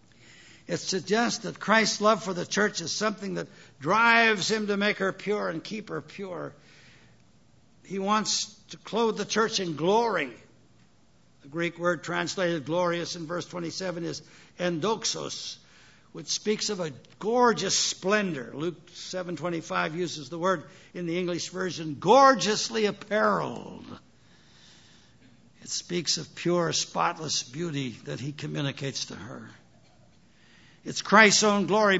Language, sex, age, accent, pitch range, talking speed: English, male, 60-79, American, 165-210 Hz, 135 wpm